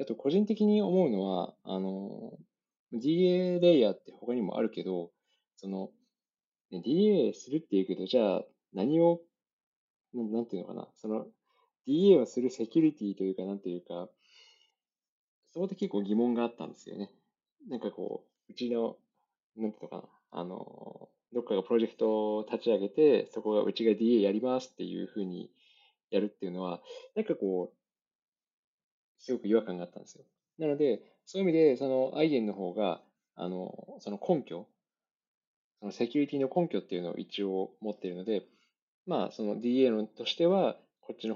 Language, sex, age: Japanese, male, 20-39